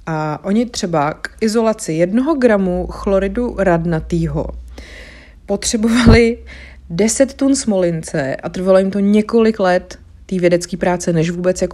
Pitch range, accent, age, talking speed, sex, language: 165-195 Hz, native, 30-49, 125 wpm, female, Czech